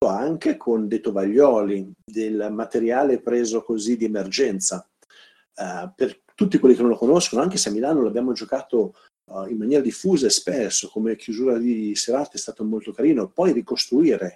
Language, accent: Italian, native